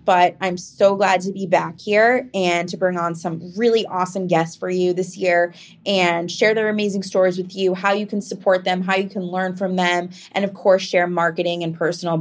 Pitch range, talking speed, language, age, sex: 165-200 Hz, 220 wpm, English, 20-39, female